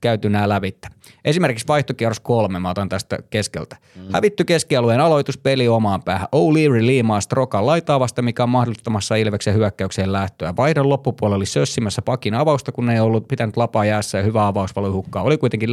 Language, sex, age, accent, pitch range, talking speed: Finnish, male, 30-49, native, 105-130 Hz, 165 wpm